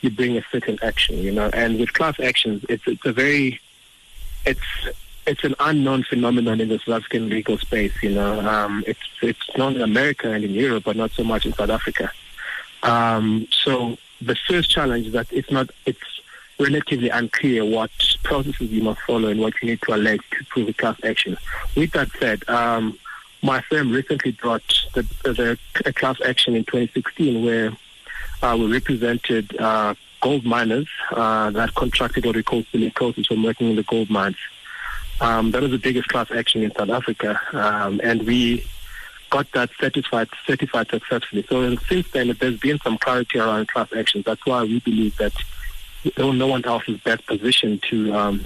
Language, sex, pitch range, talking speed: English, male, 110-125 Hz, 185 wpm